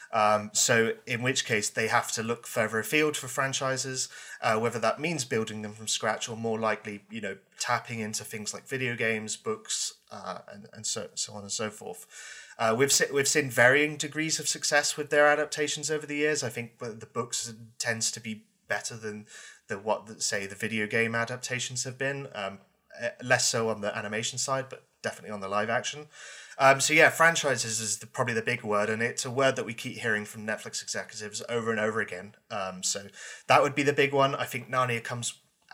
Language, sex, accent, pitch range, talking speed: English, male, British, 110-135 Hz, 205 wpm